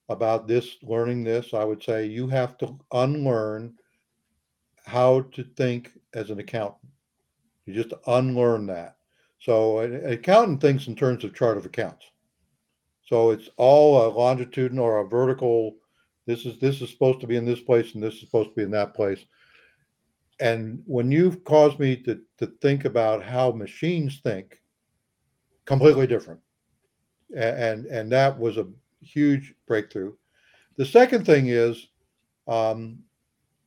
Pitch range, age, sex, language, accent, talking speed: 115-140 Hz, 60-79, male, English, American, 150 wpm